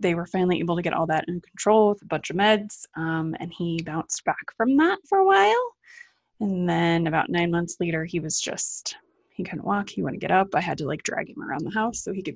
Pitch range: 170-225 Hz